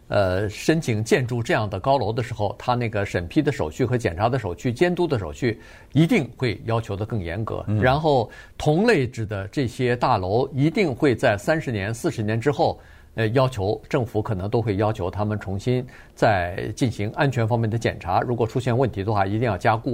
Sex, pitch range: male, 110-160 Hz